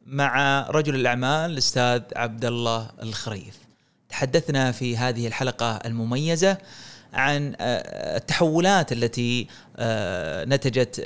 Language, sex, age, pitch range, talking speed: Arabic, male, 30-49, 120-135 Hz, 80 wpm